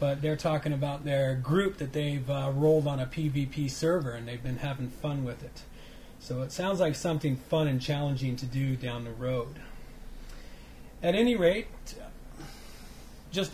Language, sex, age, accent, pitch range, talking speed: English, male, 40-59, American, 150-185 Hz, 170 wpm